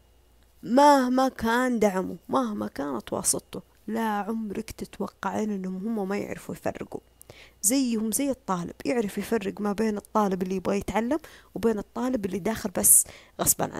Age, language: 20-39, Arabic